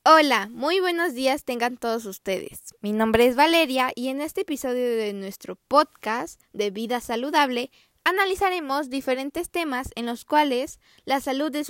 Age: 10-29